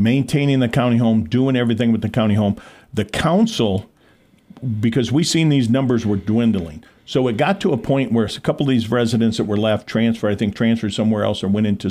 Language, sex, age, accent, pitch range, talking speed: English, male, 50-69, American, 105-130 Hz, 215 wpm